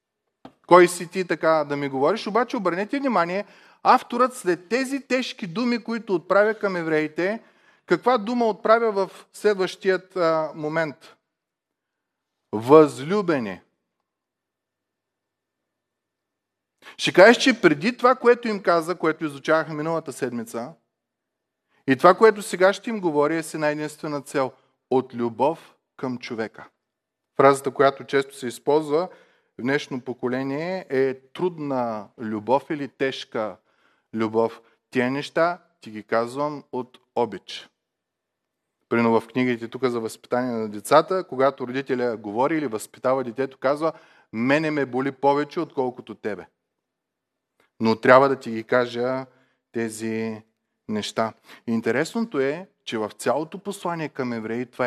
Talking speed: 125 wpm